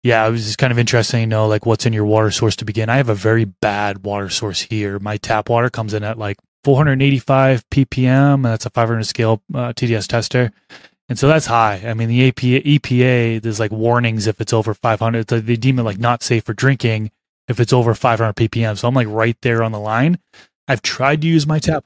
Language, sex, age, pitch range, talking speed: English, male, 20-39, 110-125 Hz, 230 wpm